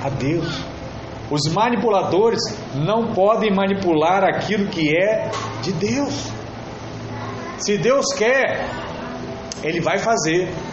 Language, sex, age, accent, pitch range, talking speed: Portuguese, male, 40-59, Brazilian, 150-220 Hz, 95 wpm